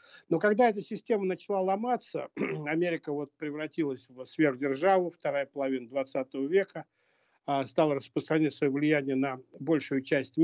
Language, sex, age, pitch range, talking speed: Russian, male, 50-69, 140-175 Hz, 120 wpm